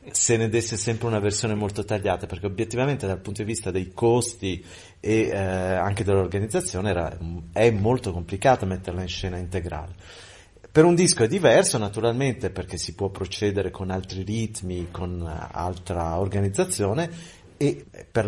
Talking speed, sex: 150 wpm, male